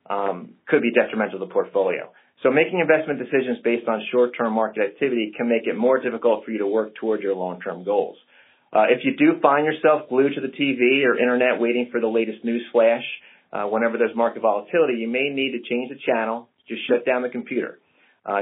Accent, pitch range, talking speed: American, 110-130 Hz, 210 wpm